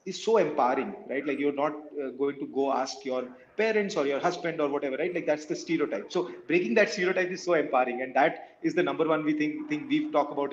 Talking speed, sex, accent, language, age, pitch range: 245 wpm, male, Indian, English, 30-49, 140-180 Hz